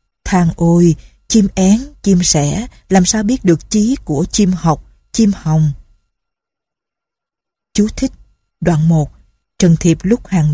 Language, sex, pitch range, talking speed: Vietnamese, female, 165-205 Hz, 135 wpm